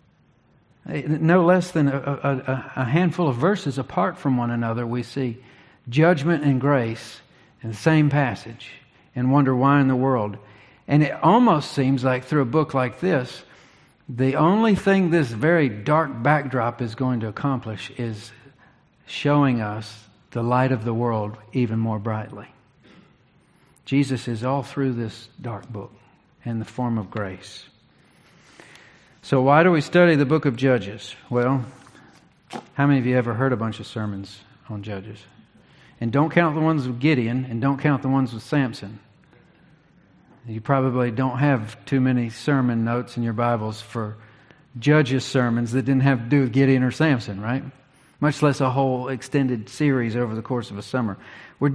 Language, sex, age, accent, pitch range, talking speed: English, male, 50-69, American, 115-145 Hz, 165 wpm